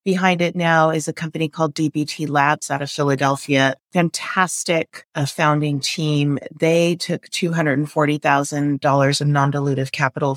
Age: 30-49